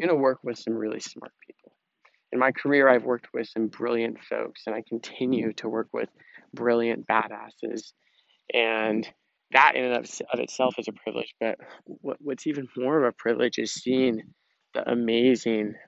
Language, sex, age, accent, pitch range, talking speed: English, male, 20-39, American, 115-135 Hz, 170 wpm